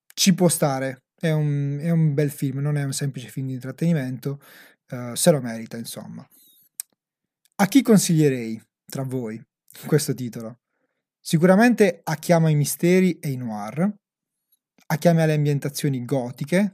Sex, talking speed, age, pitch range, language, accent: male, 155 wpm, 30-49, 135-170 Hz, Italian, native